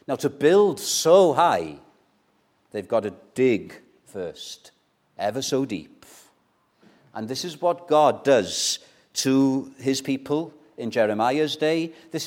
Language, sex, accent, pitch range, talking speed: English, male, British, 125-155 Hz, 125 wpm